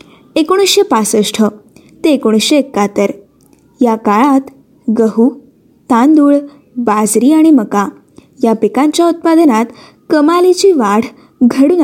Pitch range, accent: 235-315 Hz, native